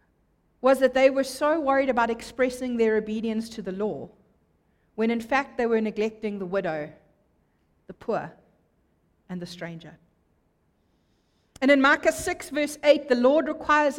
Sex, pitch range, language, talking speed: female, 200-270 Hz, English, 150 wpm